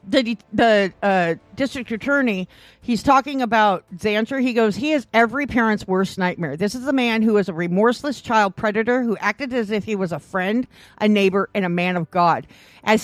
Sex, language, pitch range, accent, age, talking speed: female, English, 195-255 Hz, American, 50-69, 200 wpm